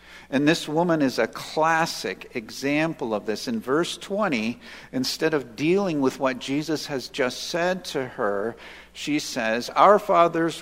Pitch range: 120-170 Hz